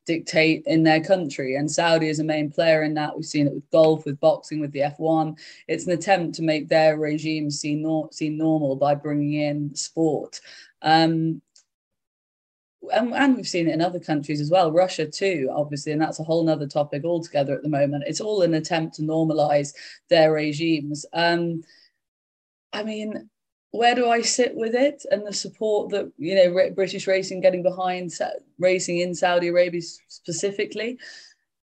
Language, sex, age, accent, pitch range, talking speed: English, female, 20-39, British, 155-190 Hz, 175 wpm